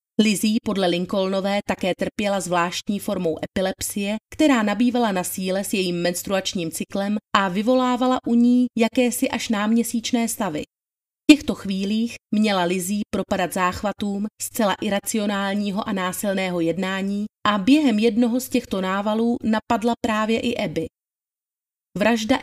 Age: 30-49